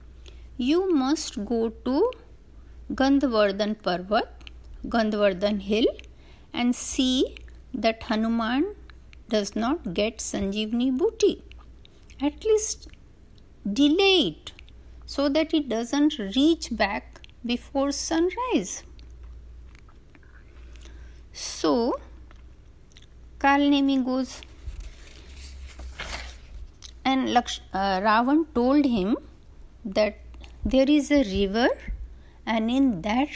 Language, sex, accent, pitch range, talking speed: Hindi, female, native, 195-290 Hz, 85 wpm